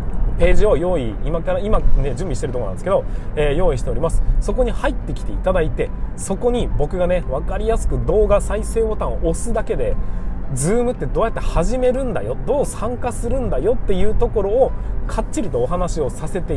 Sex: male